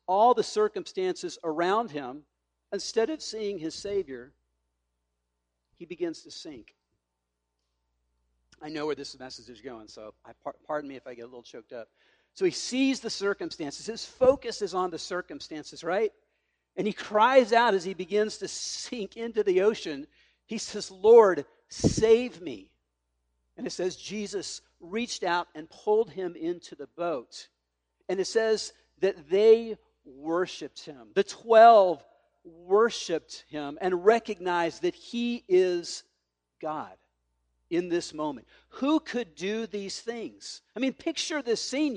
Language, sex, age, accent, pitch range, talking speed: English, male, 50-69, American, 150-240 Hz, 145 wpm